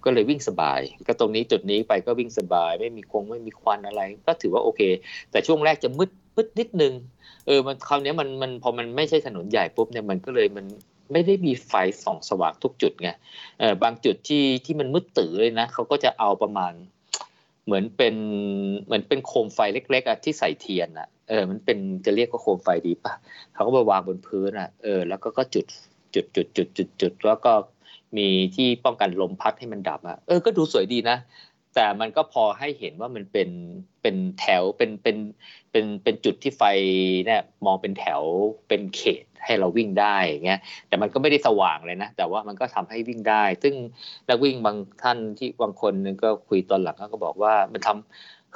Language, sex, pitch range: Thai, male, 100-155 Hz